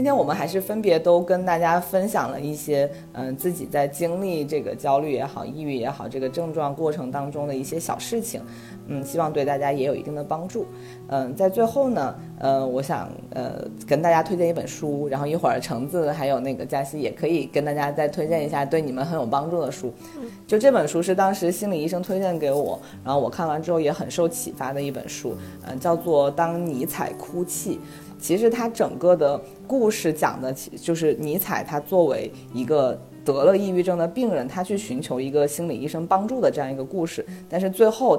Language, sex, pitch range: Chinese, female, 140-180 Hz